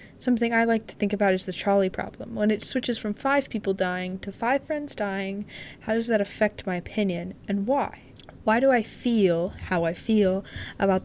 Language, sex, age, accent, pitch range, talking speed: English, female, 10-29, American, 190-235 Hz, 200 wpm